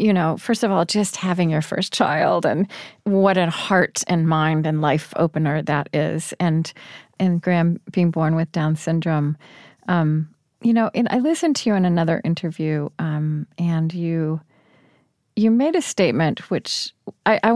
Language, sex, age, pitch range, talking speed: English, female, 30-49, 155-190 Hz, 170 wpm